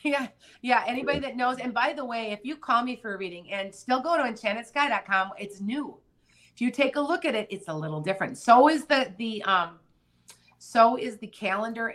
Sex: female